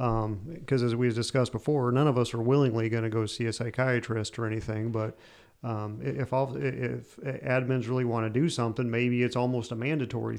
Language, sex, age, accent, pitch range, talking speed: English, male, 40-59, American, 115-135 Hz, 200 wpm